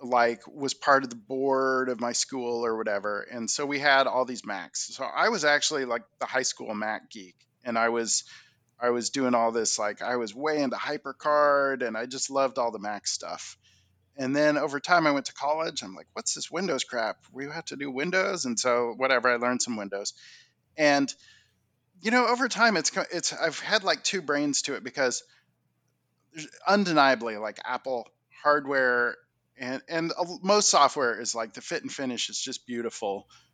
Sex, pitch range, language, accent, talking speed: male, 120-160 Hz, English, American, 195 wpm